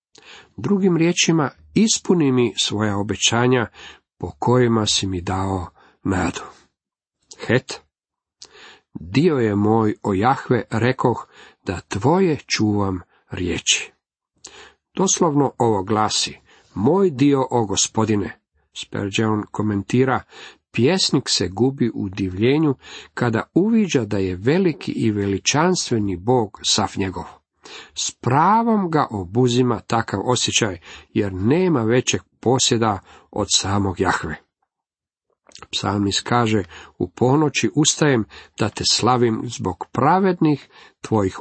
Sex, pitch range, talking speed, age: male, 100-130 Hz, 105 wpm, 50-69